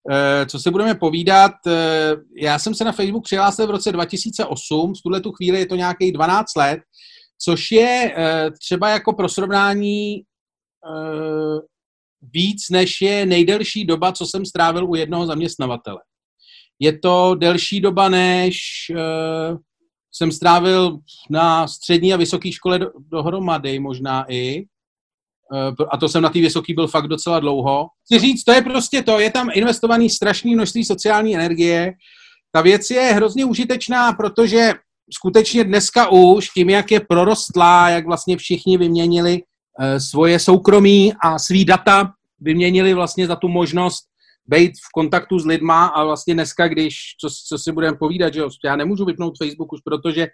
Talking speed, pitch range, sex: 150 wpm, 160-200 Hz, male